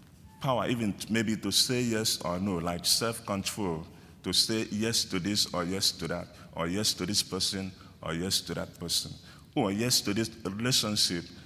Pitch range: 90-120 Hz